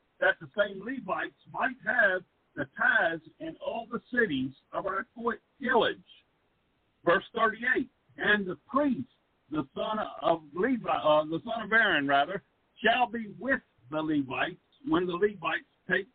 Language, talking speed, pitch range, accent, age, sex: English, 145 wpm, 155-220 Hz, American, 50-69, male